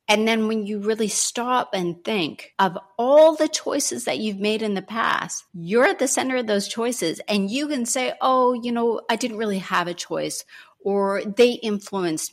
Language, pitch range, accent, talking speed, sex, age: English, 170-220 Hz, American, 200 wpm, female, 40-59